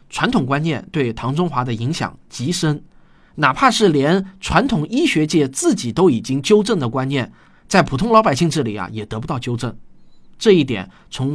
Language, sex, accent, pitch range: Chinese, male, native, 130-195 Hz